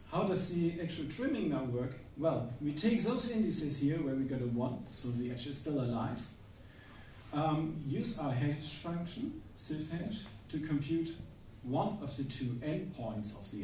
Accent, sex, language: German, male, Dutch